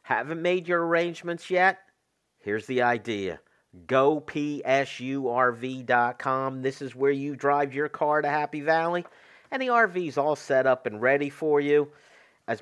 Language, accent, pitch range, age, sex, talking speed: English, American, 120-165 Hz, 50-69, male, 155 wpm